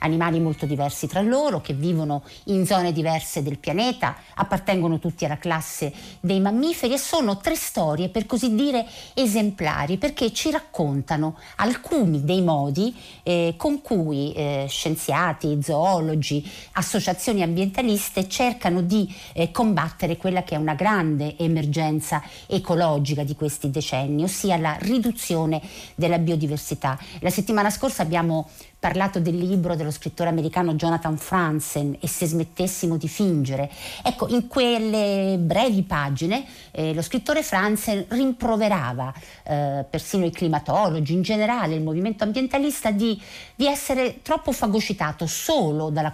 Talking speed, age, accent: 135 wpm, 50-69, native